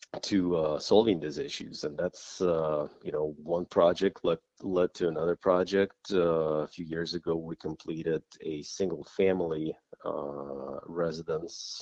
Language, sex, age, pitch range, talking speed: English, male, 30-49, 75-90 Hz, 140 wpm